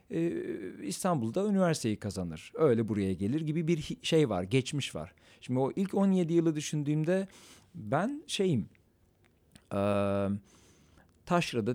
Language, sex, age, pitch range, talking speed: Turkish, male, 50-69, 105-140 Hz, 110 wpm